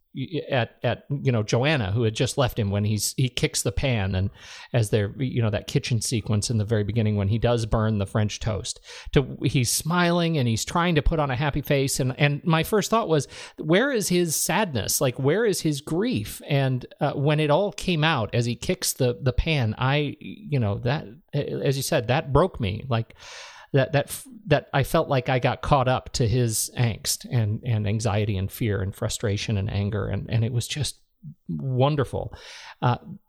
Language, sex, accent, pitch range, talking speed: English, male, American, 115-155 Hz, 205 wpm